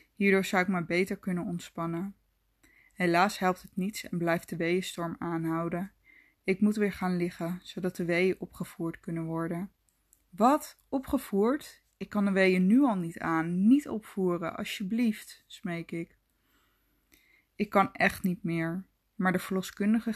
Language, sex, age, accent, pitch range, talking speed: Dutch, female, 20-39, Dutch, 175-210 Hz, 150 wpm